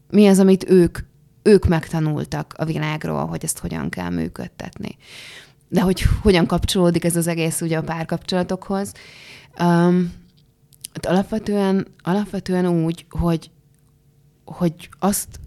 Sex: female